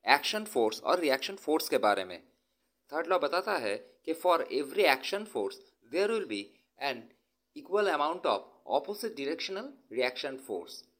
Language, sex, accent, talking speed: Hindi, male, native, 155 wpm